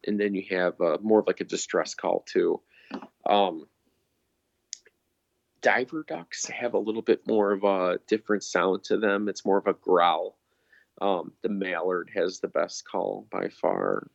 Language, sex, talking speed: English, male, 170 wpm